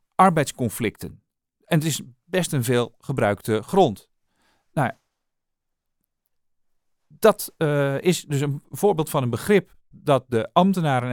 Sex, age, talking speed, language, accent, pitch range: male, 40-59, 115 wpm, Dutch, Dutch, 125-175 Hz